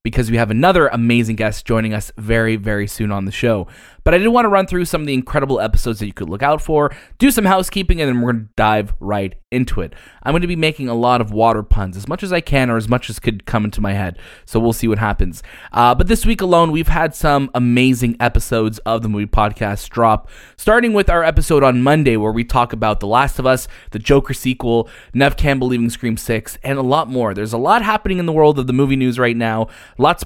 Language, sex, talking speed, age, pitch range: English, male, 255 wpm, 20-39, 115-155 Hz